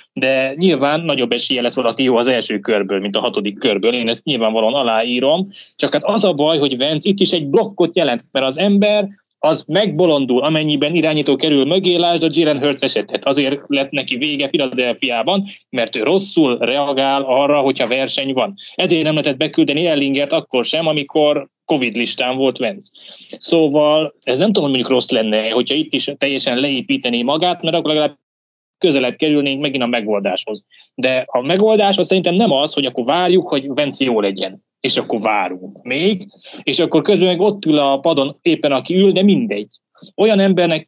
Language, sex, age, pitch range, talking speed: Hungarian, male, 20-39, 135-180 Hz, 180 wpm